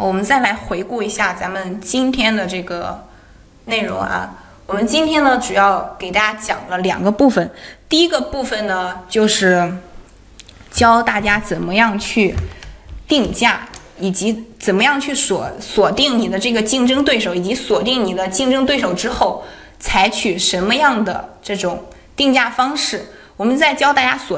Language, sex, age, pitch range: Chinese, female, 20-39, 185-235 Hz